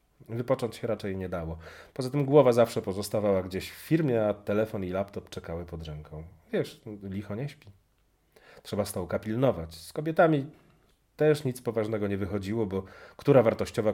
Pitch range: 85-115 Hz